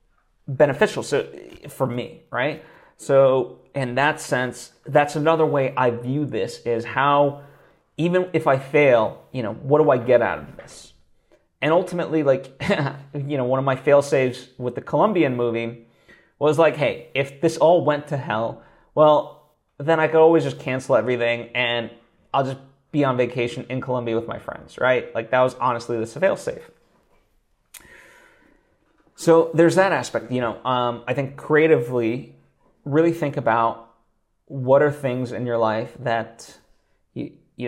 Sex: male